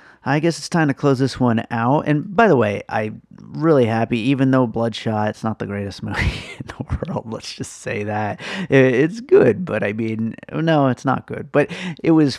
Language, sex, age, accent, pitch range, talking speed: English, male, 30-49, American, 105-130 Hz, 210 wpm